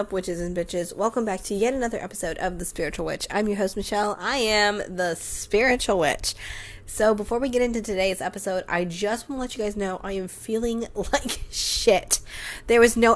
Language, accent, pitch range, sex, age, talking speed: English, American, 185-230 Hz, female, 20-39, 205 wpm